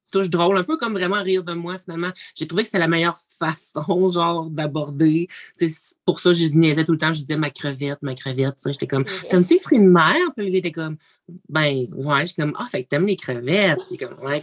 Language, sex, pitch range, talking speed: French, male, 135-180 Hz, 255 wpm